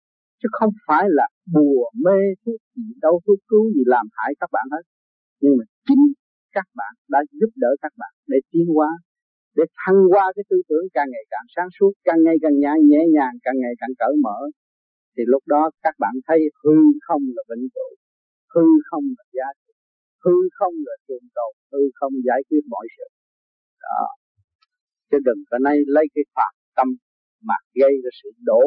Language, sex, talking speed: Vietnamese, male, 195 wpm